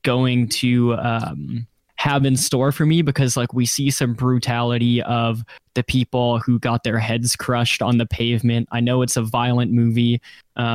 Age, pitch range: 10-29, 120-130 Hz